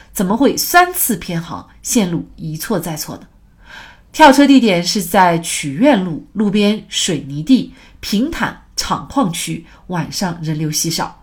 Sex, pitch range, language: female, 165-250 Hz, Chinese